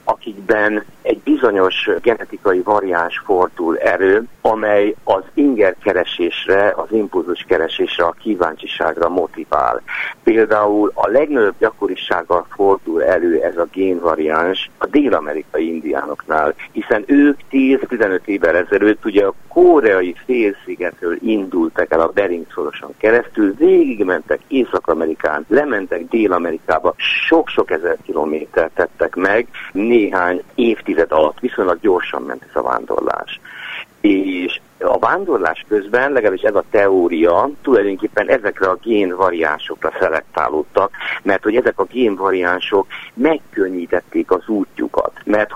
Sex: male